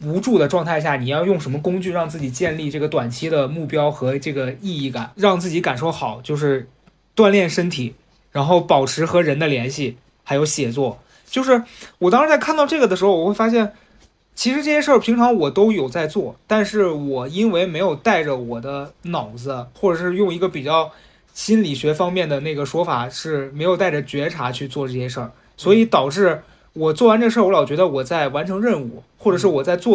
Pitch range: 140-185 Hz